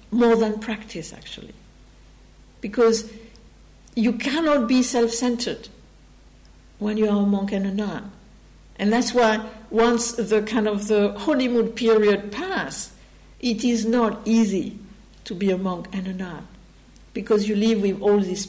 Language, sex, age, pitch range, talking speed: English, female, 60-79, 210-255 Hz, 145 wpm